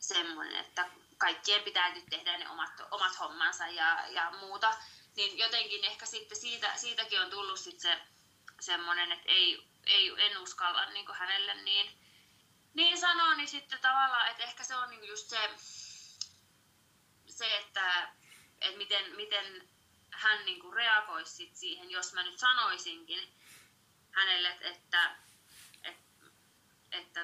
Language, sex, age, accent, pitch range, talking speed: Finnish, female, 20-39, native, 180-245 Hz, 140 wpm